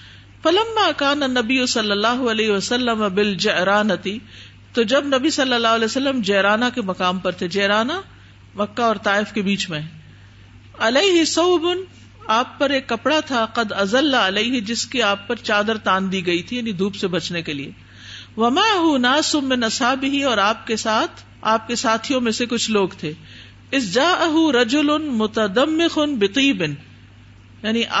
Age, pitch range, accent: 50-69, 200-275 Hz, Indian